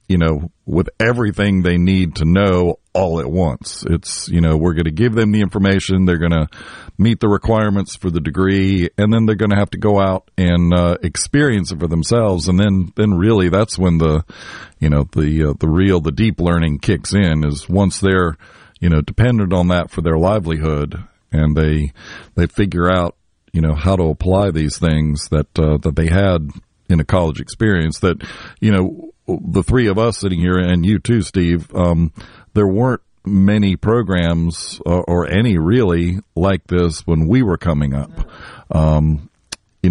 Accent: American